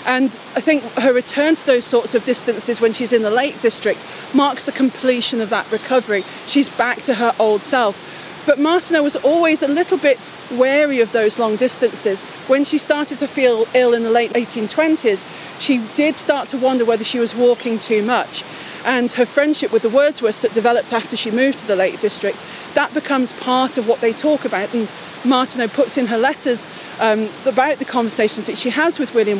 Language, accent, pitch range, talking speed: English, British, 230-270 Hz, 200 wpm